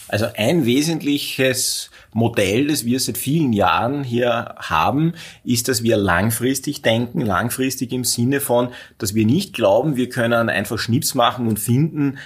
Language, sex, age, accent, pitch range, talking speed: German, male, 30-49, Austrian, 105-130 Hz, 150 wpm